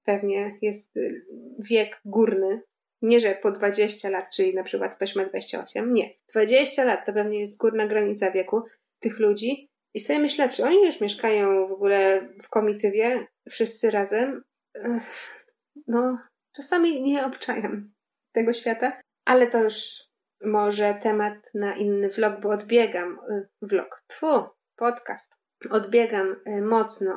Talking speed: 135 wpm